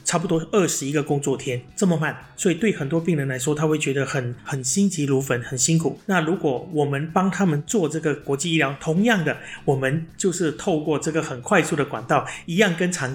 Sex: male